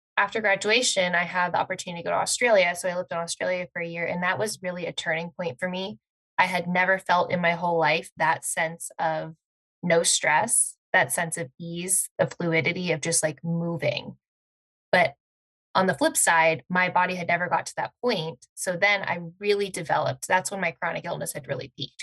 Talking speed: 205 wpm